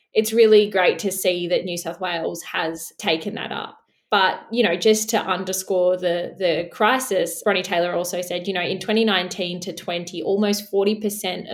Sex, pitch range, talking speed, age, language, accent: female, 180-205 Hz, 175 wpm, 20-39, English, Australian